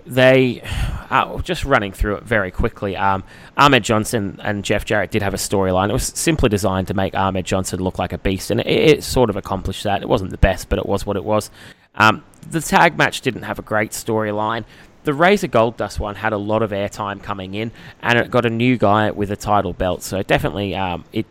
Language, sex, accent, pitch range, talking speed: English, male, Australian, 95-110 Hz, 230 wpm